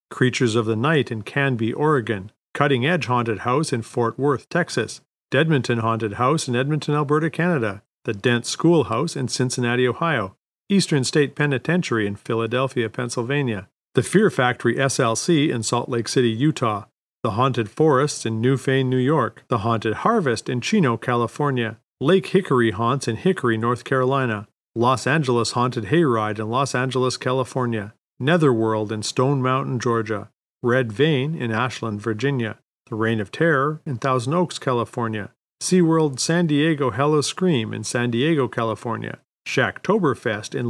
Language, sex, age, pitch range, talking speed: English, male, 40-59, 115-145 Hz, 145 wpm